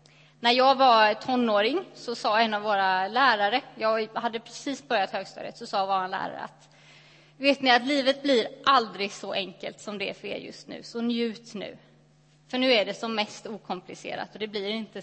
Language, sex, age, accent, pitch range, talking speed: Swedish, female, 20-39, native, 200-255 Hz, 195 wpm